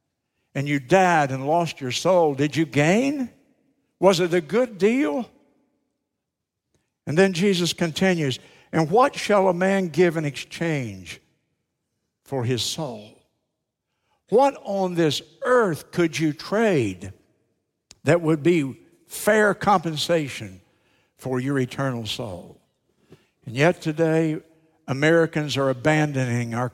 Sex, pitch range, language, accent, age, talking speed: male, 135-175 Hz, English, American, 60-79, 120 wpm